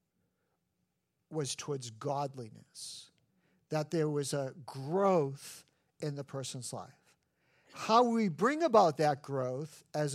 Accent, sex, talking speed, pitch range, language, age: American, male, 110 wpm, 155-210 Hz, English, 50-69